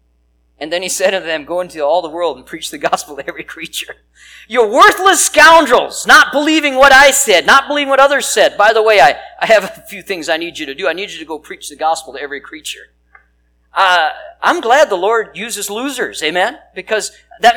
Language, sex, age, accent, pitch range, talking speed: English, male, 40-59, American, 160-260 Hz, 225 wpm